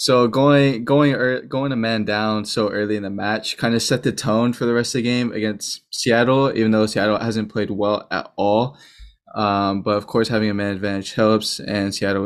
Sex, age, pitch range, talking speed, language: male, 20-39, 105-120 Hz, 215 wpm, English